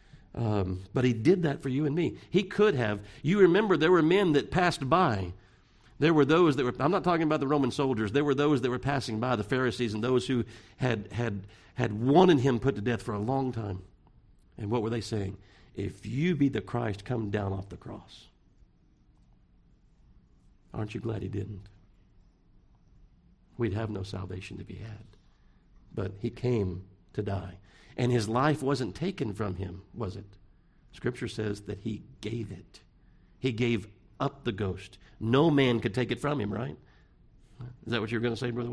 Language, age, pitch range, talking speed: English, 60-79, 100-125 Hz, 195 wpm